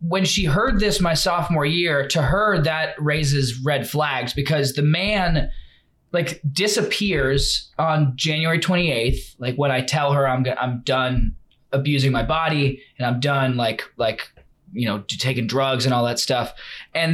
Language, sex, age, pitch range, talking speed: English, male, 20-39, 125-160 Hz, 160 wpm